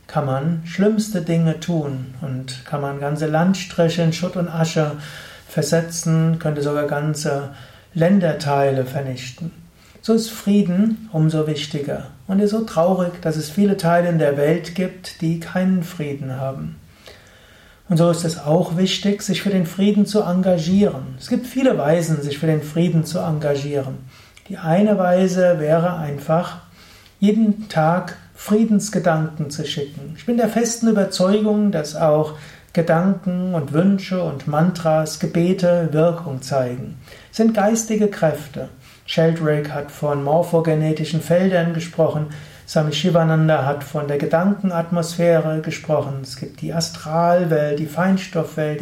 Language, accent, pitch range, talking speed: German, German, 150-180 Hz, 135 wpm